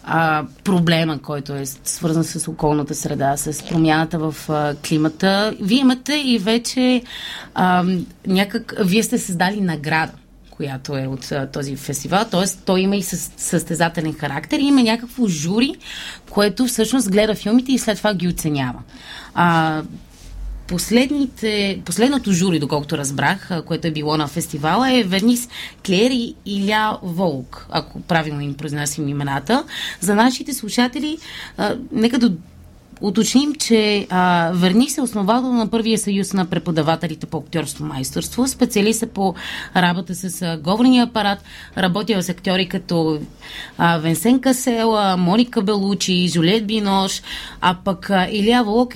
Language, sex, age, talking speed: Bulgarian, female, 30-49, 135 wpm